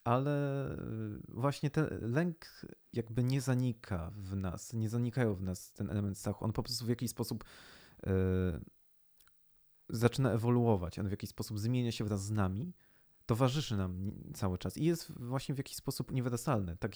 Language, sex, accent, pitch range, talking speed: Polish, male, native, 100-125 Hz, 165 wpm